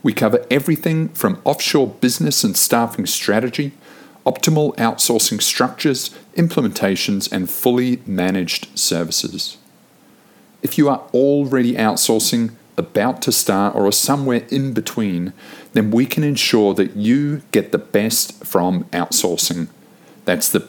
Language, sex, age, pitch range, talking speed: English, male, 50-69, 105-140 Hz, 125 wpm